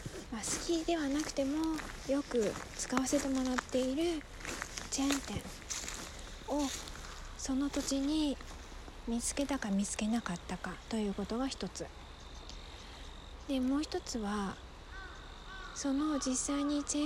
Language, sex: Japanese, female